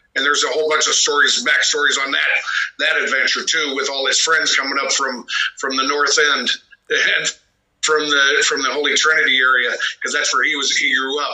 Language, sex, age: English, male, 50-69